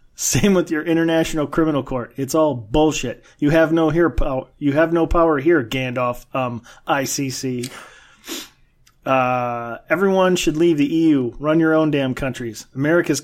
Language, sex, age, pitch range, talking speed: English, male, 30-49, 130-165 Hz, 155 wpm